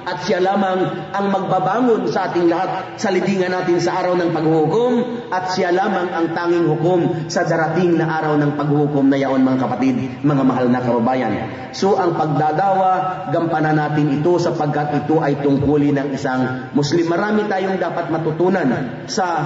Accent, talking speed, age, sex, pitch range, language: native, 165 wpm, 40-59, male, 155-205 Hz, Filipino